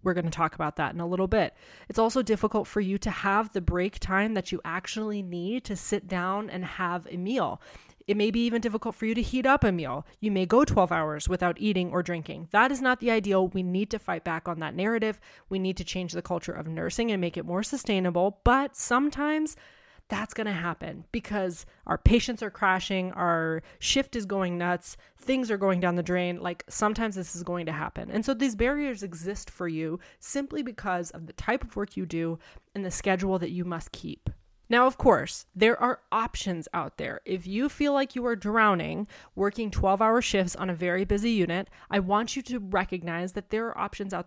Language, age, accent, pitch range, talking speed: English, 20-39, American, 175-225 Hz, 220 wpm